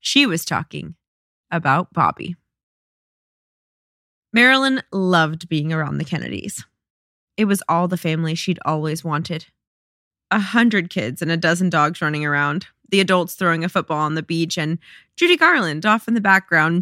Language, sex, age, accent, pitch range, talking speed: English, female, 20-39, American, 160-215 Hz, 155 wpm